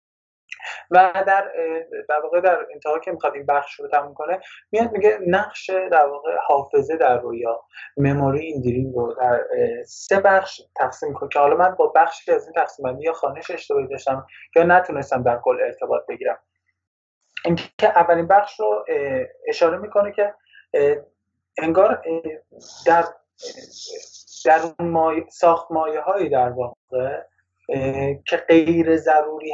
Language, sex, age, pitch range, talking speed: English, male, 20-39, 145-210 Hz, 135 wpm